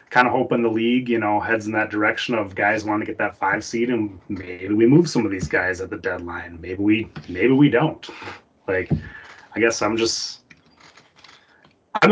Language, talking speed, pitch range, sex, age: English, 205 wpm, 105-125 Hz, male, 20-39